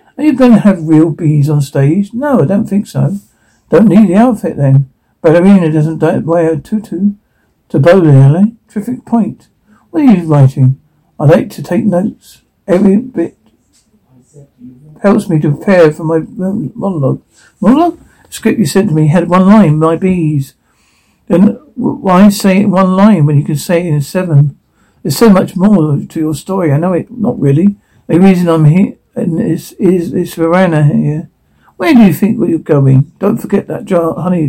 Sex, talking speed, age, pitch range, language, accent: male, 185 wpm, 60-79, 145-200 Hz, English, British